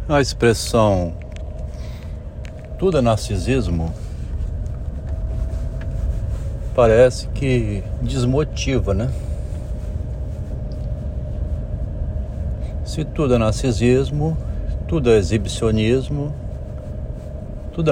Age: 70-89